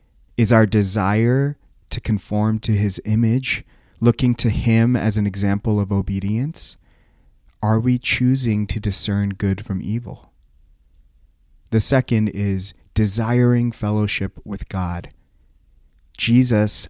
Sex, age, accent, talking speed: male, 30-49, American, 115 wpm